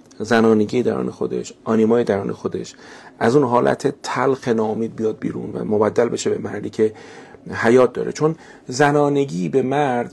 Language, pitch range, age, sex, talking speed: Persian, 115-135 Hz, 40-59, male, 150 wpm